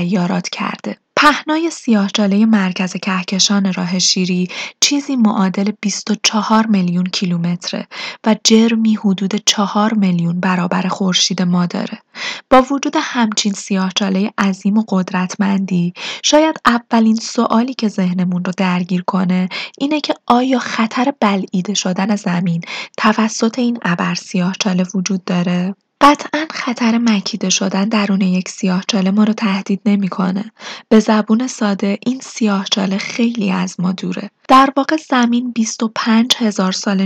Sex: female